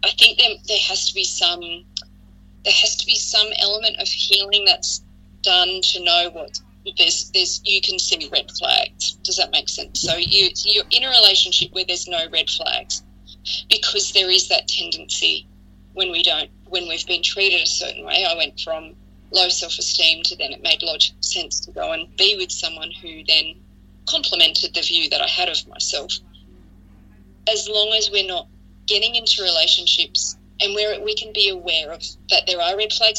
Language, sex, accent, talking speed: English, female, Australian, 190 wpm